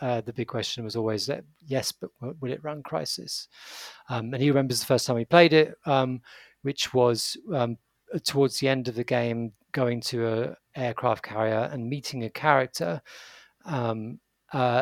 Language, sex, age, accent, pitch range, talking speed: English, male, 40-59, British, 115-135 Hz, 180 wpm